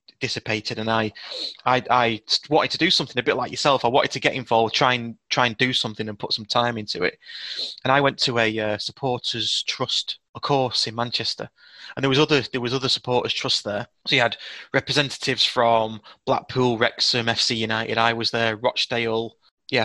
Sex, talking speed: male, 200 wpm